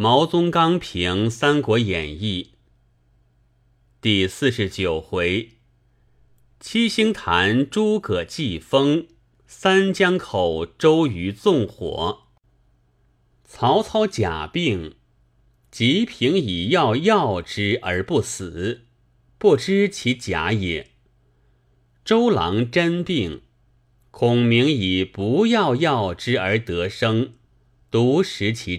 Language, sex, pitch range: Chinese, male, 95-135 Hz